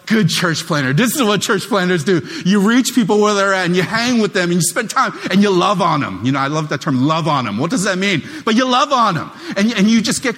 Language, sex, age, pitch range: English, male, 30-49, 150-225 Hz